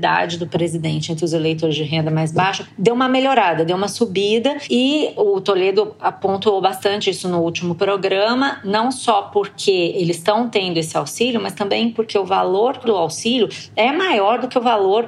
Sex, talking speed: female, 180 wpm